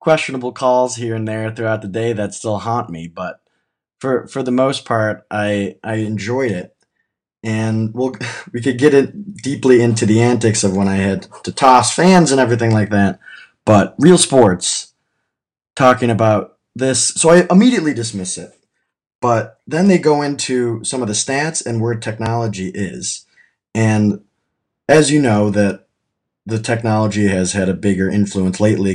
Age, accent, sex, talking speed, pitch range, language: 20-39, American, male, 170 wpm, 100-130 Hz, English